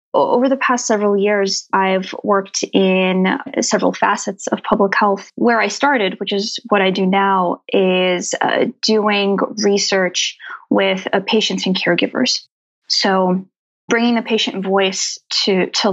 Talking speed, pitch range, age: 145 wpm, 185-220 Hz, 20-39